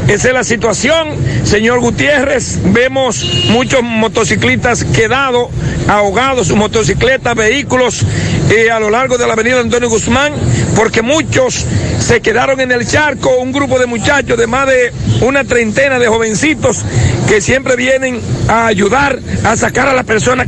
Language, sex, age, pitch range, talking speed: Spanish, male, 60-79, 215-255 Hz, 150 wpm